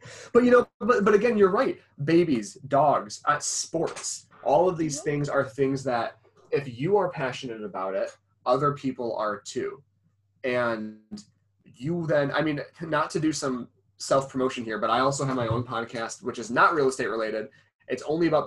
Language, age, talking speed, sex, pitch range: English, 20-39, 180 wpm, male, 115-160 Hz